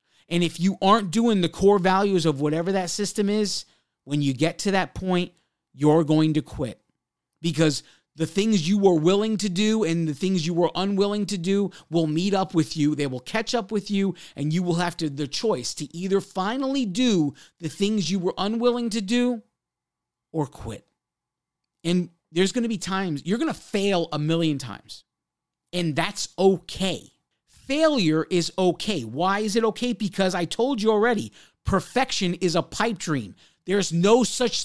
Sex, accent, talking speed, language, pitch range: male, American, 185 wpm, English, 165-225 Hz